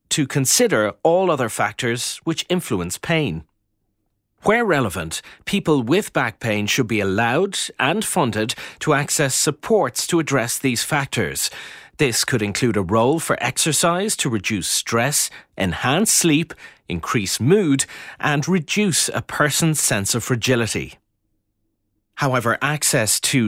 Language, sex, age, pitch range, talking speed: English, male, 30-49, 110-155 Hz, 130 wpm